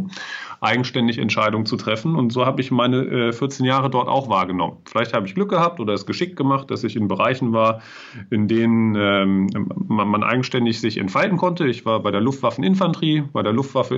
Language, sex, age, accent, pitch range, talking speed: German, male, 40-59, German, 110-140 Hz, 190 wpm